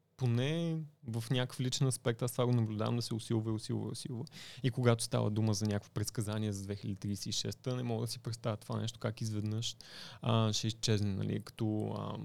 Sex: male